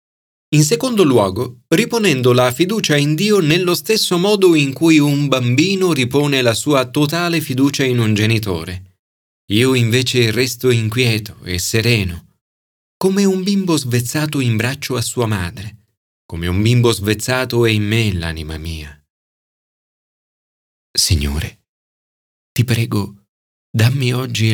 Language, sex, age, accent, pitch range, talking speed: Italian, male, 30-49, native, 105-155 Hz, 125 wpm